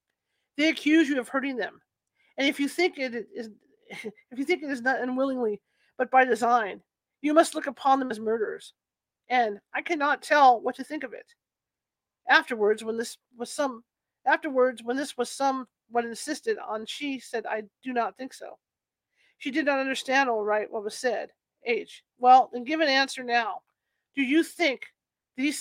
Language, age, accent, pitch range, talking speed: English, 40-59, American, 235-290 Hz, 180 wpm